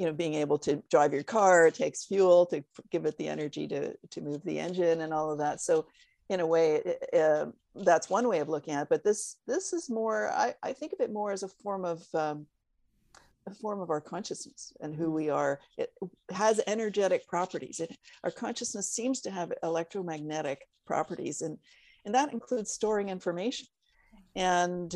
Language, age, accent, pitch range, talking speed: English, 50-69, American, 160-215 Hz, 195 wpm